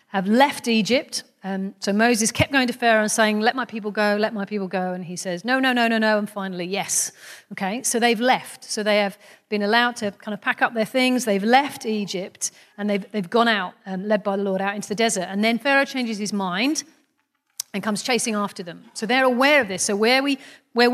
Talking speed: 240 wpm